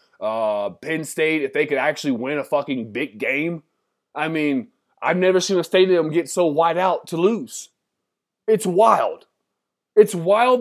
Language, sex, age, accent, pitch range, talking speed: English, male, 20-39, American, 160-215 Hz, 165 wpm